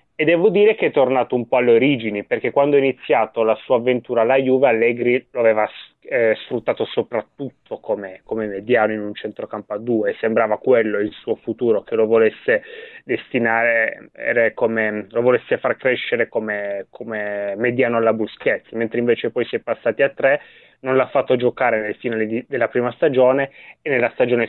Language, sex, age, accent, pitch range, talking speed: Italian, male, 20-39, native, 110-135 Hz, 180 wpm